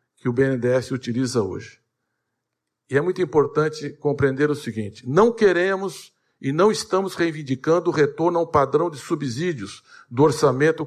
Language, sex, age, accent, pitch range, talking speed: Portuguese, male, 60-79, Brazilian, 140-180 Hz, 150 wpm